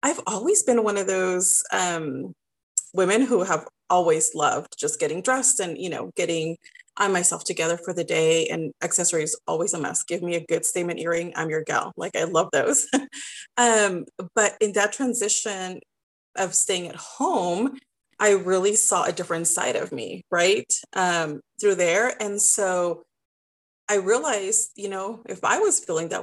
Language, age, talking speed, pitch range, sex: English, 30-49, 170 wpm, 170-235 Hz, female